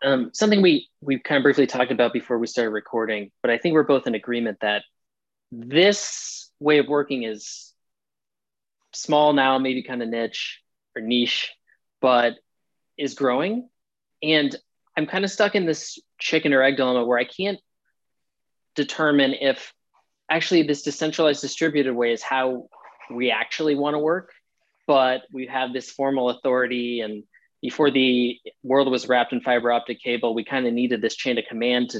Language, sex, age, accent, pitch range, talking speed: English, male, 20-39, American, 120-145 Hz, 165 wpm